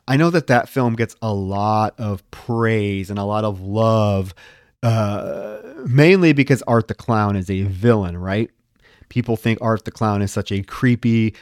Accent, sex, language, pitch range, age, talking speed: American, male, English, 100-125 Hz, 30-49, 180 wpm